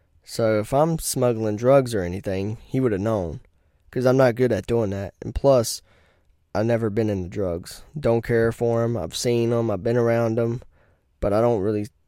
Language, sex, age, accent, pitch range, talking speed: English, male, 10-29, American, 95-120 Hz, 200 wpm